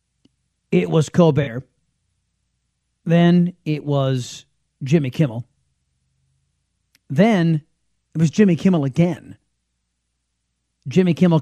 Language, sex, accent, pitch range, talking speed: English, male, American, 130-190 Hz, 85 wpm